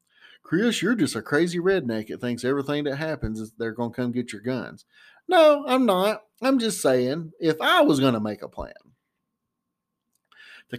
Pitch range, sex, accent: 105-140 Hz, male, American